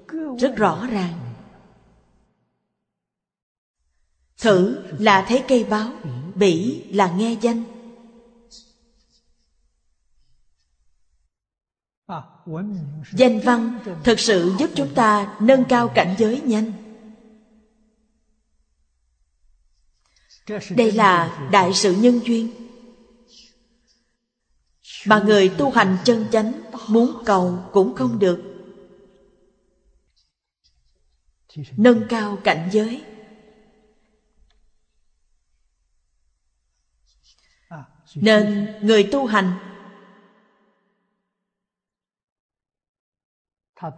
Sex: female